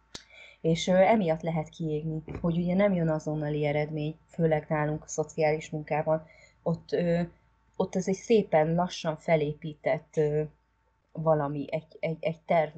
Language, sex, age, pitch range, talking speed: Hungarian, female, 30-49, 150-180 Hz, 135 wpm